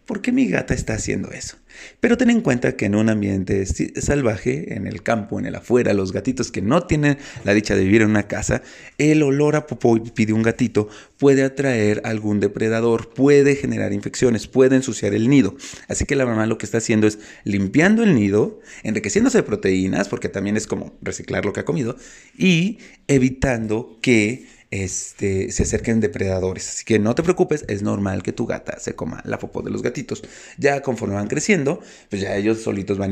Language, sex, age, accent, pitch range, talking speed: Spanish, male, 30-49, Mexican, 105-135 Hz, 195 wpm